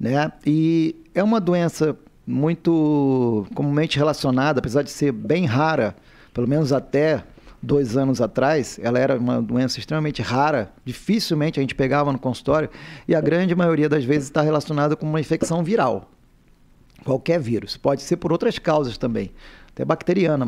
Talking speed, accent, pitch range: 155 wpm, Brazilian, 135-160 Hz